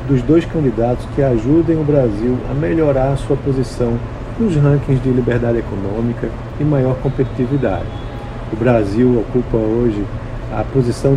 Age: 50-69